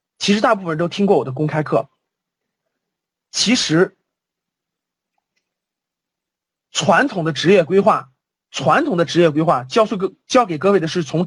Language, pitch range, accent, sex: Chinese, 165-270 Hz, native, male